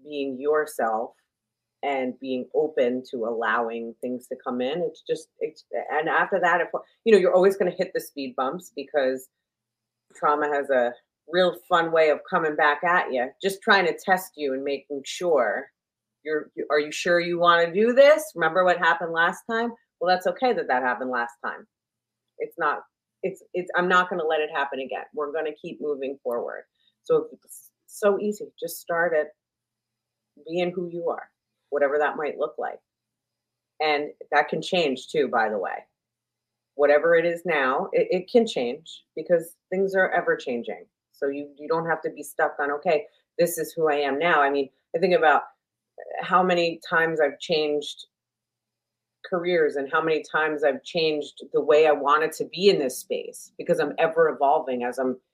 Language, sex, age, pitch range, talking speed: English, female, 30-49, 140-185 Hz, 190 wpm